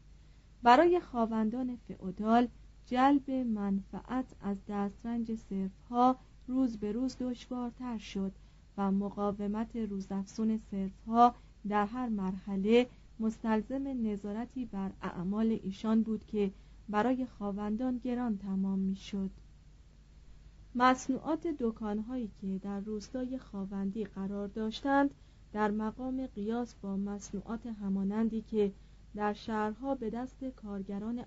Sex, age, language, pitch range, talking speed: female, 40-59, Persian, 200-245 Hz, 100 wpm